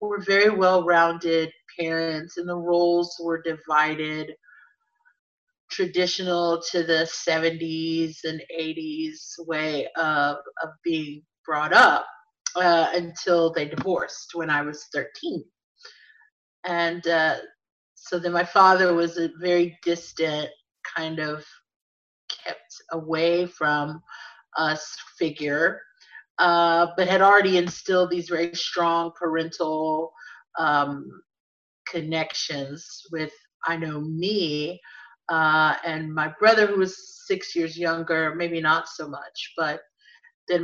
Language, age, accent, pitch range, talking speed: English, 30-49, American, 160-190 Hz, 110 wpm